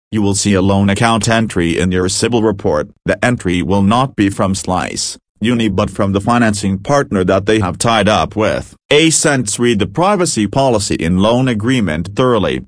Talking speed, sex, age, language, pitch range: 190 wpm, male, 40-59, English, 95-120 Hz